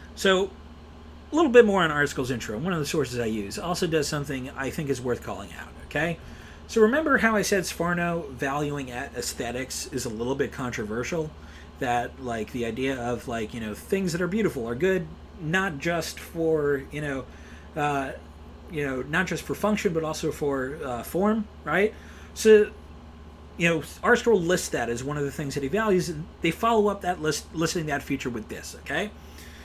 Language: English